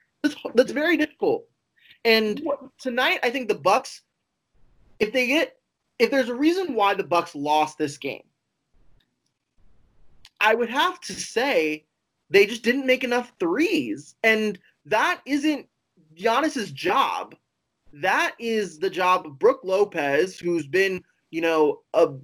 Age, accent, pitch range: 20-39, American, 170-275 Hz